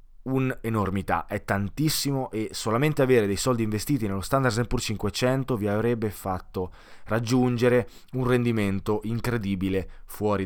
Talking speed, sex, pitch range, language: 120 wpm, male, 95-125 Hz, Italian